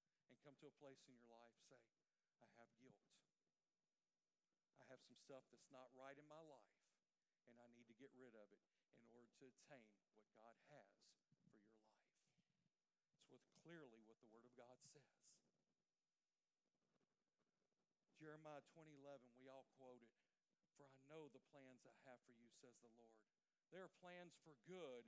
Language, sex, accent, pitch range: English, male, American, 135-185 Hz